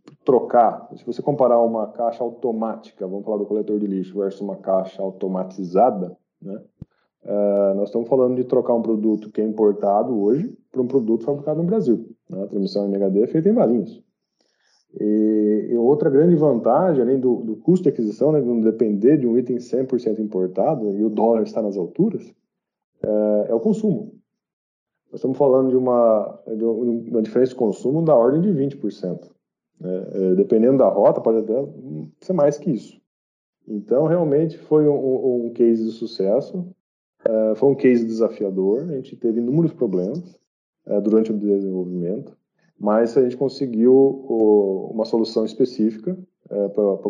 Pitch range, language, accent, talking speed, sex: 105-140 Hz, Portuguese, Brazilian, 165 wpm, male